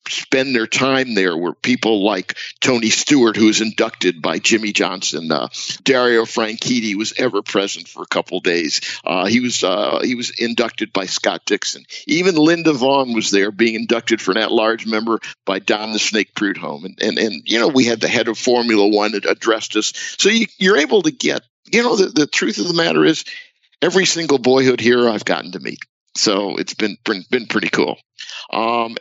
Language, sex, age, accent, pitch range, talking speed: English, male, 50-69, American, 110-130 Hz, 205 wpm